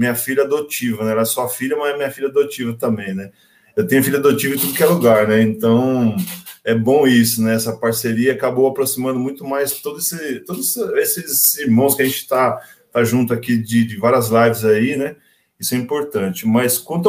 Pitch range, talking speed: 115-145 Hz, 205 wpm